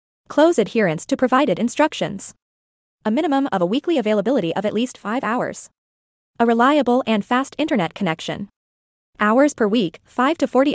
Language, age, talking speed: English, 20-39, 155 wpm